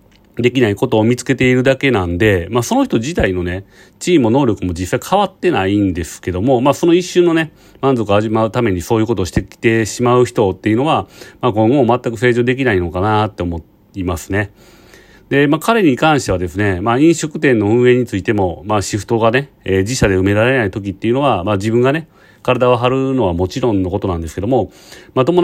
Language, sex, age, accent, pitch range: Japanese, male, 40-59, native, 95-130 Hz